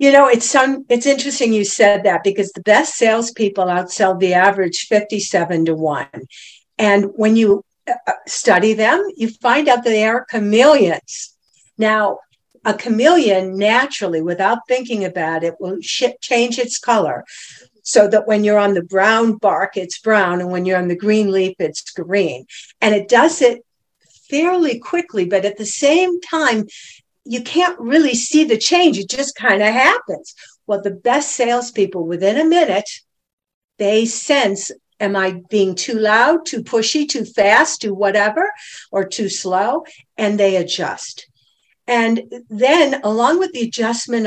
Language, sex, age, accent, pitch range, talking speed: English, female, 60-79, American, 195-255 Hz, 160 wpm